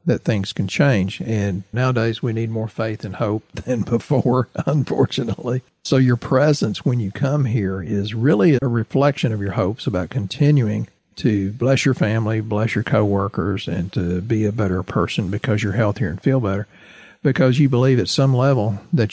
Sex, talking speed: male, 180 wpm